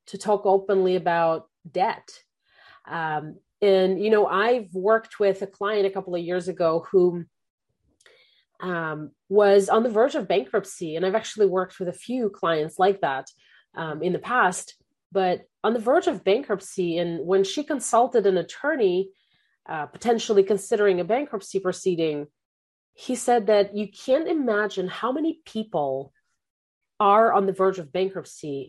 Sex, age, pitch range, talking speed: female, 30-49, 175-210 Hz, 155 wpm